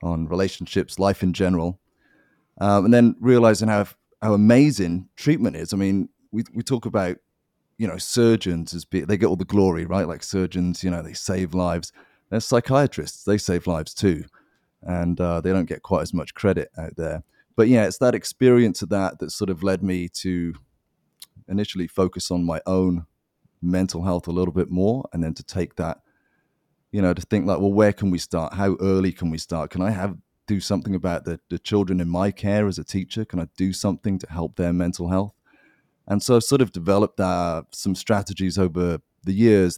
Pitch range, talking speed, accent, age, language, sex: 85-105 Hz, 205 wpm, British, 30-49, English, male